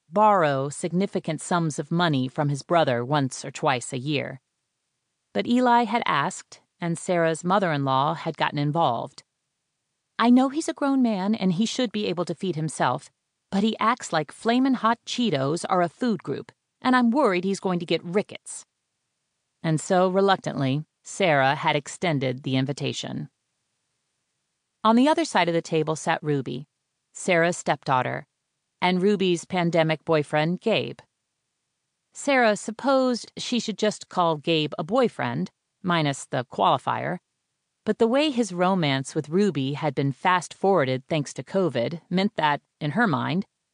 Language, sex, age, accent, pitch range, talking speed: English, female, 40-59, American, 150-200 Hz, 150 wpm